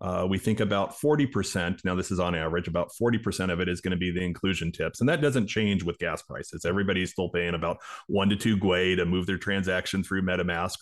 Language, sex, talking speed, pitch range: English, male, 235 wpm, 90-105 Hz